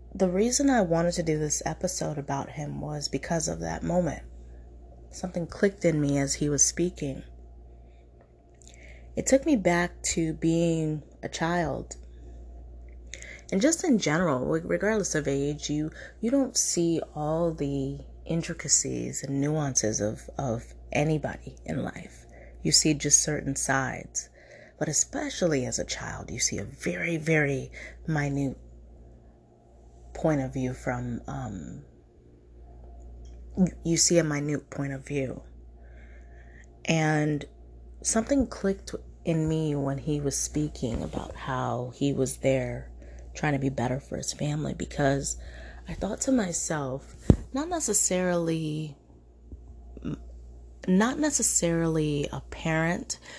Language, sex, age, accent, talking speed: English, female, 30-49, American, 125 wpm